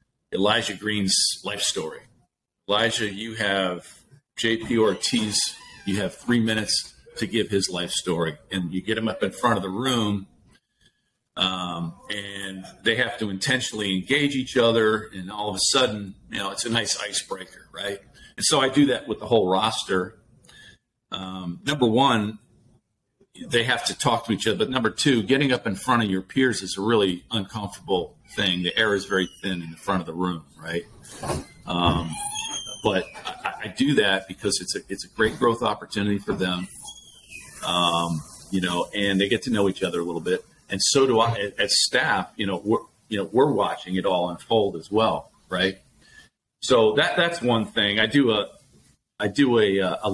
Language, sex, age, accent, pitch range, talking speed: English, male, 50-69, American, 95-115 Hz, 185 wpm